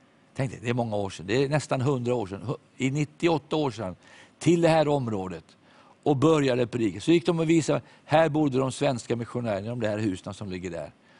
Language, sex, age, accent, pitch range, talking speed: English, male, 50-69, Swedish, 105-135 Hz, 220 wpm